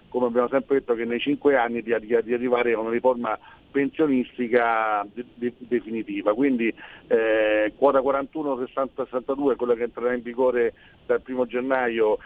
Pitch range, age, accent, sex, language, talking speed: 120-140 Hz, 40-59, native, male, Italian, 130 wpm